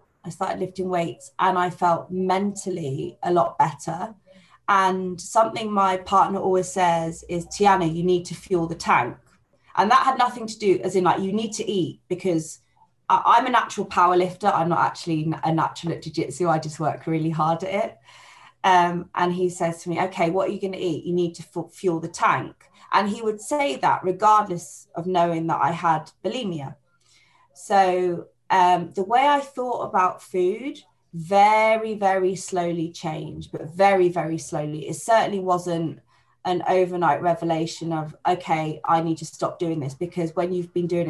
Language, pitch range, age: English, 165-195 Hz, 20-39